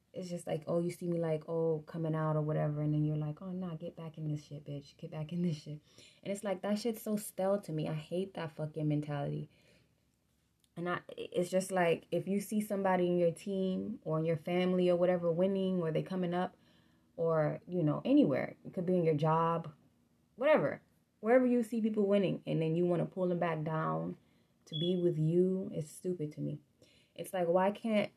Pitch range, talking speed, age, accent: 155-190 Hz, 225 wpm, 20-39, American